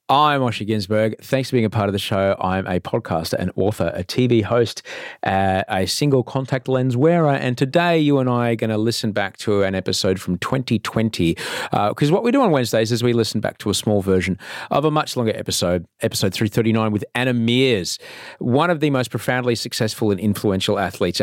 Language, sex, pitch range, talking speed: English, male, 100-130 Hz, 205 wpm